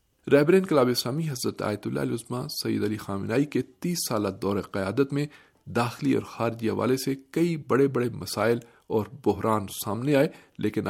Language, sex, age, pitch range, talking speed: Urdu, male, 50-69, 105-135 Hz, 165 wpm